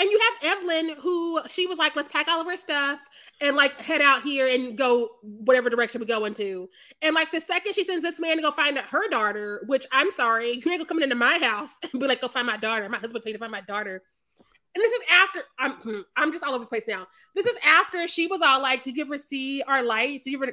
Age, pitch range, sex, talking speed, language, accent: 20-39, 250-340 Hz, female, 265 wpm, English, American